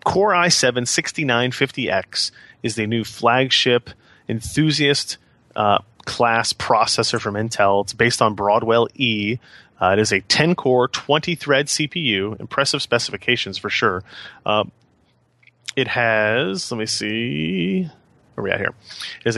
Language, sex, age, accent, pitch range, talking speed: English, male, 30-49, American, 105-135 Hz, 135 wpm